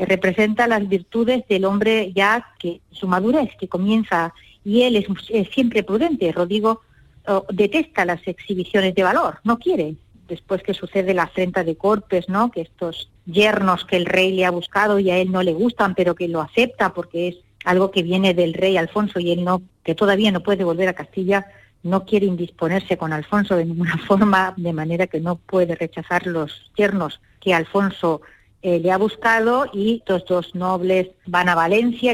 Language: Spanish